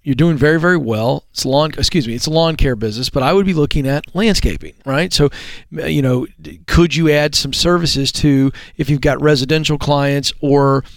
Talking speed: 200 wpm